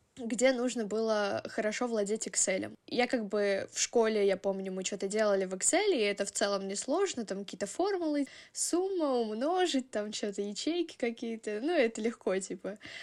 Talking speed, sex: 165 wpm, female